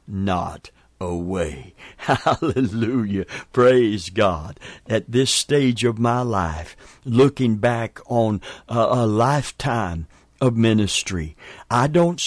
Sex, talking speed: male, 100 wpm